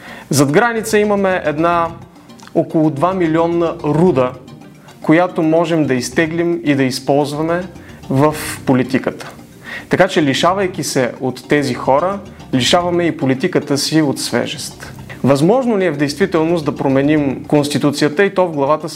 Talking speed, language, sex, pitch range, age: 135 wpm, Bulgarian, male, 135-180 Hz, 30-49